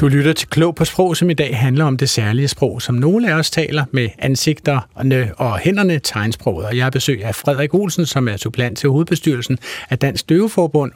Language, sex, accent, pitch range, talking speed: Danish, male, native, 125-160 Hz, 205 wpm